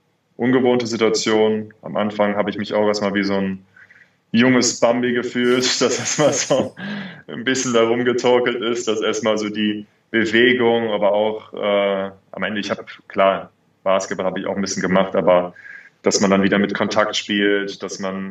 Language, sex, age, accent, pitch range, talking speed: German, male, 20-39, German, 95-110 Hz, 175 wpm